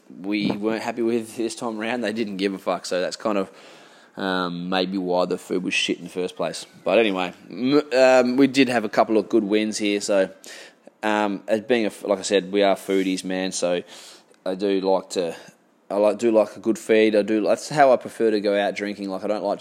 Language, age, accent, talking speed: English, 20-39, Australian, 230 wpm